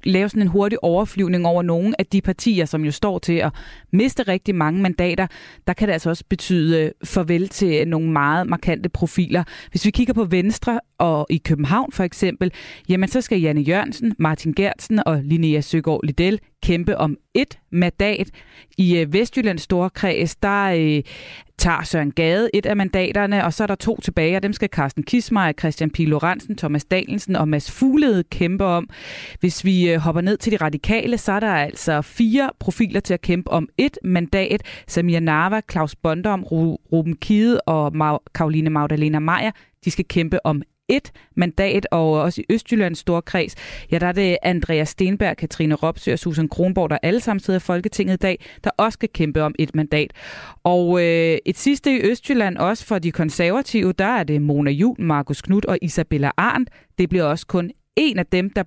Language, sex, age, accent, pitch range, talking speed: Danish, female, 20-39, native, 160-200 Hz, 185 wpm